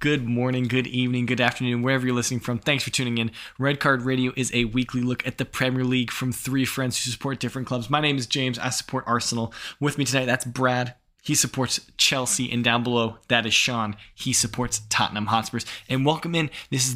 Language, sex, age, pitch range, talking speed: English, male, 20-39, 115-135 Hz, 220 wpm